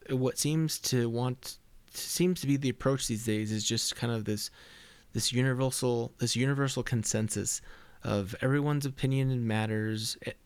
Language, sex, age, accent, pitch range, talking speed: English, male, 30-49, American, 110-135 Hz, 150 wpm